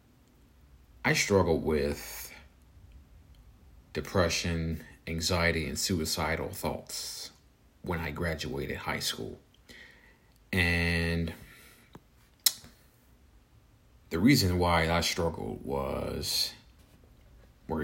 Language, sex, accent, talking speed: English, male, American, 70 wpm